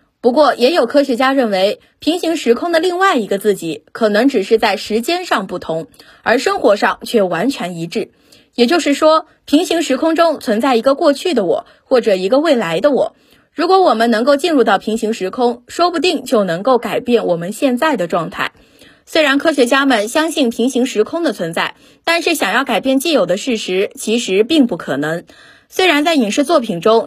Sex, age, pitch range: female, 20-39, 220-310 Hz